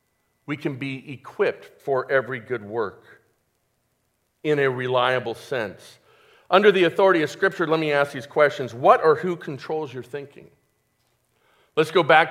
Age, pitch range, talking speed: 50-69, 155-220 Hz, 150 wpm